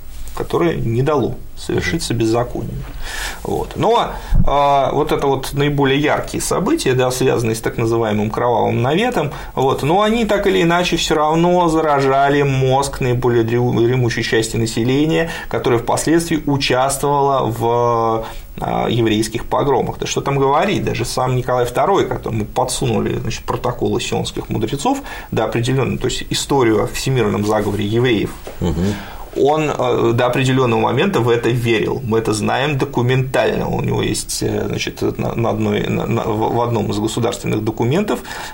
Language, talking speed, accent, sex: Russian, 135 wpm, native, male